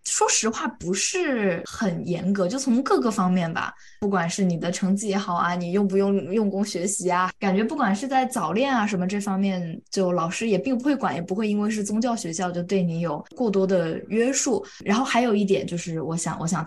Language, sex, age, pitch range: Chinese, female, 20-39, 180-210 Hz